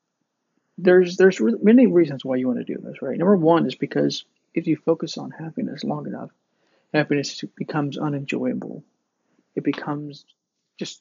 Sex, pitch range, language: male, 135-165 Hz, English